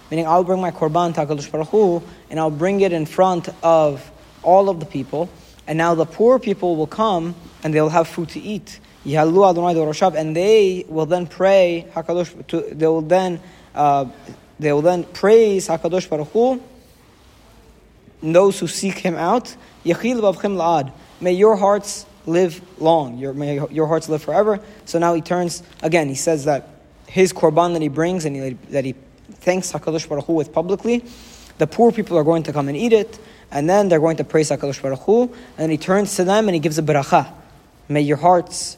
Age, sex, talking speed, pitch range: 20-39, male, 185 wpm, 155-190 Hz